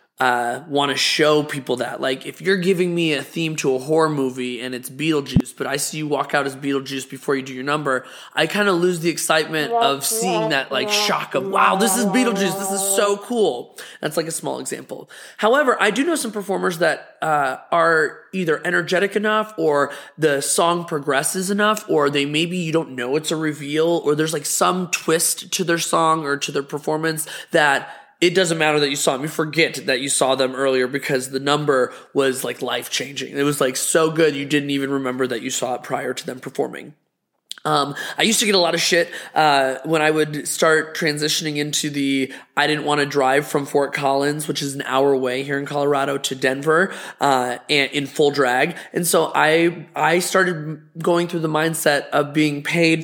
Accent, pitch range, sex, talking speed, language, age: American, 140-170 Hz, male, 210 wpm, English, 20-39